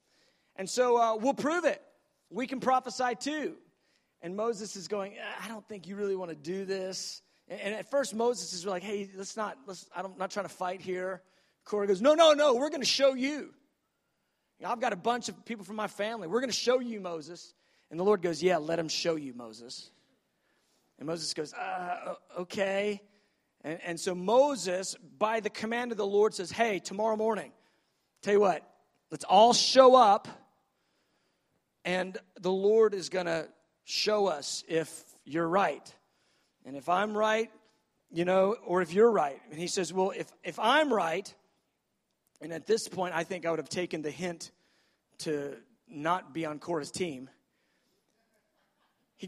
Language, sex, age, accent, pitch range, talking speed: English, male, 40-59, American, 175-225 Hz, 185 wpm